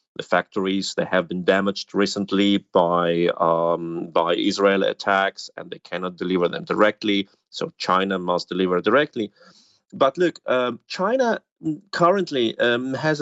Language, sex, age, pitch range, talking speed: English, male, 30-49, 100-135 Hz, 135 wpm